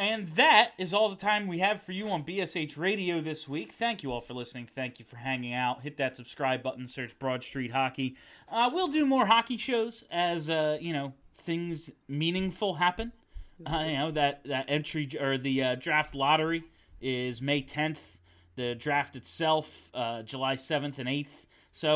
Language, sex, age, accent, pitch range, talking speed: English, male, 30-49, American, 130-185 Hz, 190 wpm